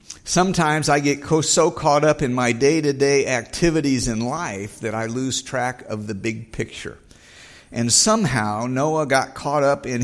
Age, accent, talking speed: 50-69, American, 175 wpm